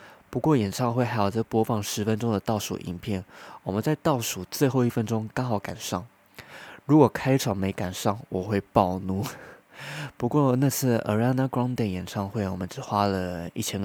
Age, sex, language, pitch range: 20-39, male, Chinese, 95-125 Hz